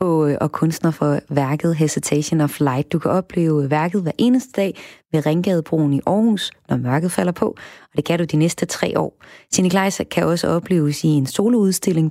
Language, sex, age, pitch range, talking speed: Danish, female, 30-49, 150-190 Hz, 185 wpm